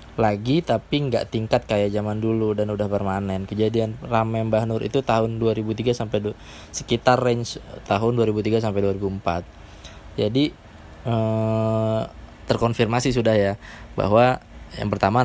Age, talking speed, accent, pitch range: 20-39, 130 wpm, native, 100-115 Hz